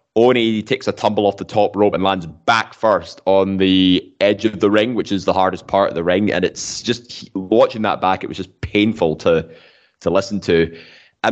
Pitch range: 95-115 Hz